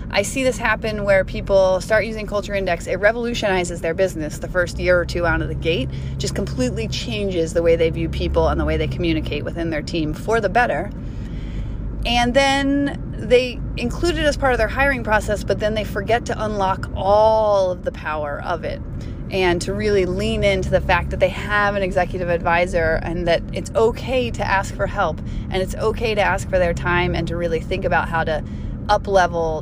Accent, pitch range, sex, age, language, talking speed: American, 165-215 Hz, female, 30-49, English, 205 wpm